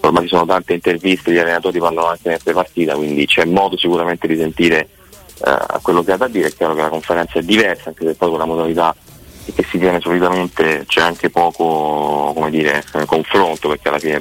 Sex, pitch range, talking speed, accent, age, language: male, 80-90 Hz, 210 wpm, native, 30-49, Italian